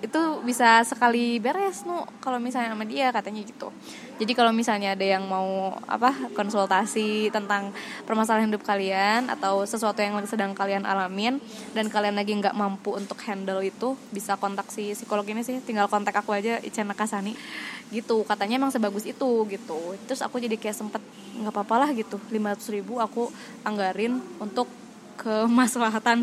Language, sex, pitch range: Indonesian, female, 210-245 Hz